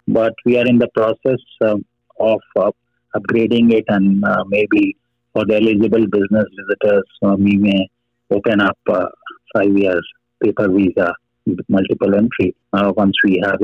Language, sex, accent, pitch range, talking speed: English, male, Indian, 100-115 Hz, 160 wpm